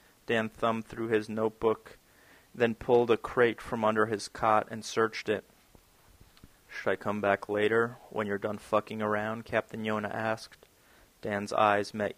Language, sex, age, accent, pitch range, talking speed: English, male, 30-49, American, 105-115 Hz, 160 wpm